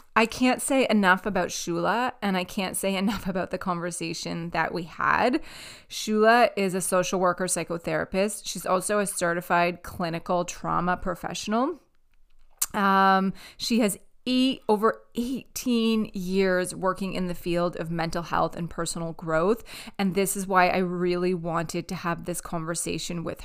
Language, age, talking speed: English, 20-39, 150 wpm